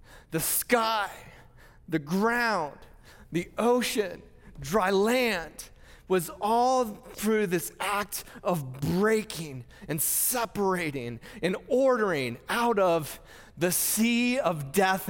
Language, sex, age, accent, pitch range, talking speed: English, male, 30-49, American, 185-250 Hz, 100 wpm